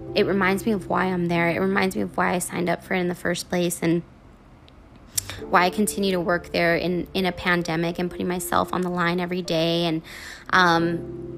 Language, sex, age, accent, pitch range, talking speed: English, female, 20-39, American, 170-195 Hz, 220 wpm